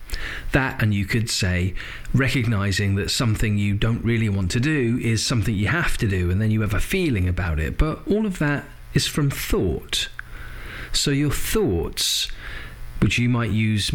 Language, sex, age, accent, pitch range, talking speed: English, male, 40-59, British, 95-125 Hz, 180 wpm